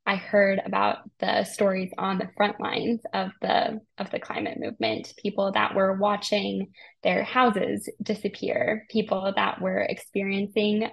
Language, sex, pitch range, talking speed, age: English, female, 200-220 Hz, 145 wpm, 10-29